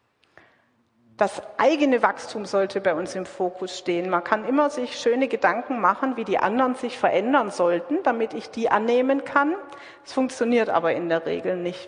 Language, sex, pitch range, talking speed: German, female, 195-235 Hz, 170 wpm